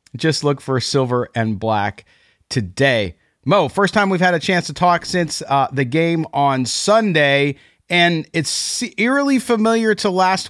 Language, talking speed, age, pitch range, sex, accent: English, 160 wpm, 40-59, 130-175 Hz, male, American